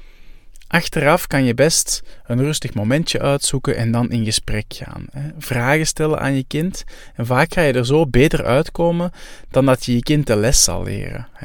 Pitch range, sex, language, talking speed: 115-145 Hz, male, Dutch, 185 wpm